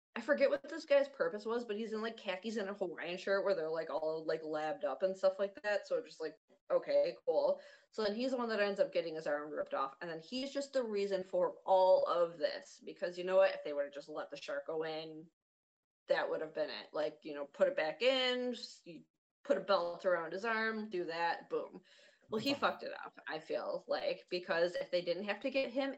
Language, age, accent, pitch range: English, 20-39, American, 170-240 Hz